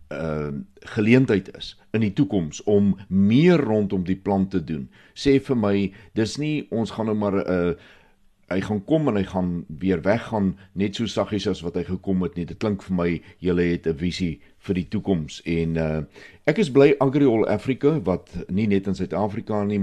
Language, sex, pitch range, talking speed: Swedish, male, 80-105 Hz, 190 wpm